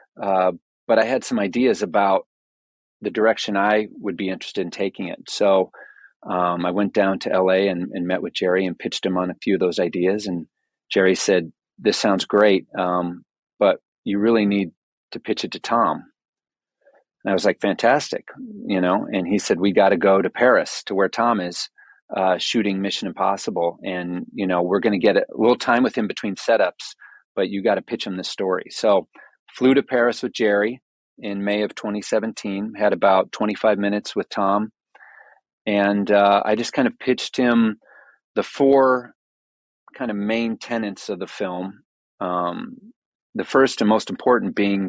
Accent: American